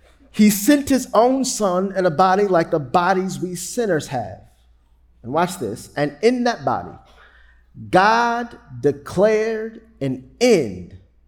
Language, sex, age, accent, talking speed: English, male, 40-59, American, 135 wpm